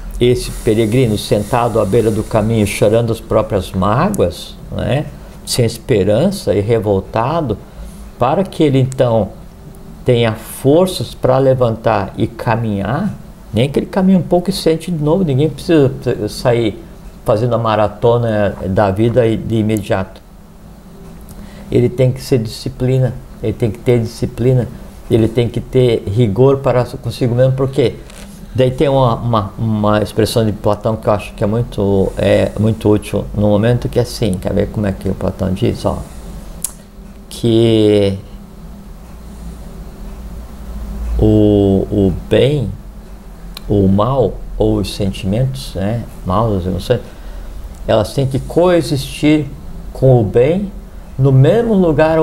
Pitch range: 105-135 Hz